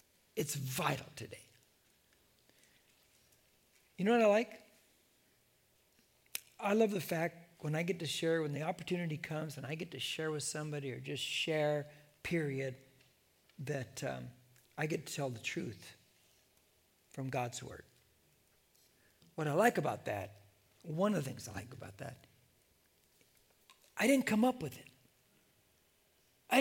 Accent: American